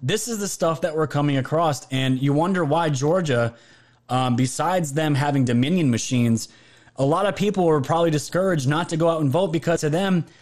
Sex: male